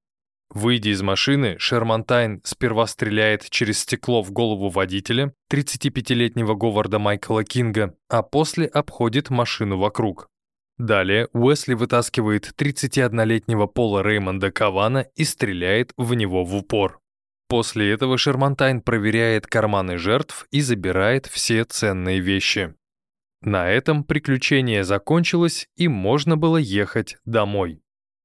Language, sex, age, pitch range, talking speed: Russian, male, 20-39, 105-135 Hz, 115 wpm